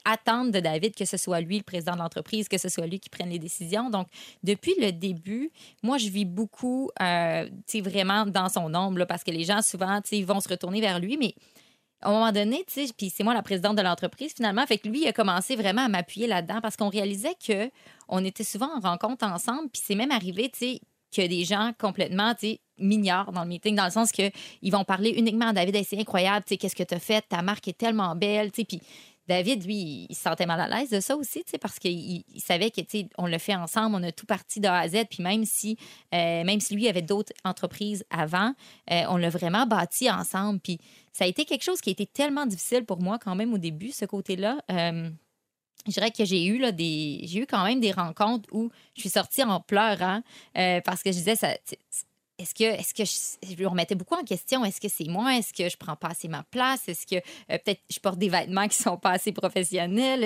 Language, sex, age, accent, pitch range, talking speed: French, female, 30-49, Canadian, 180-225 Hz, 250 wpm